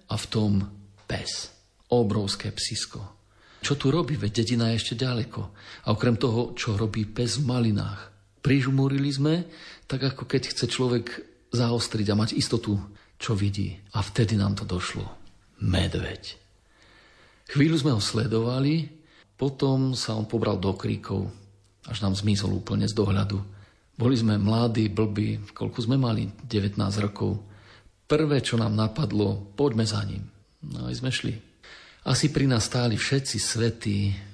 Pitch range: 100-125 Hz